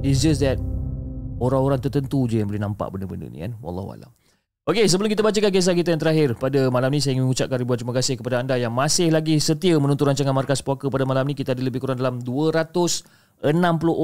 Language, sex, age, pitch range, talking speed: Malay, male, 30-49, 115-150 Hz, 210 wpm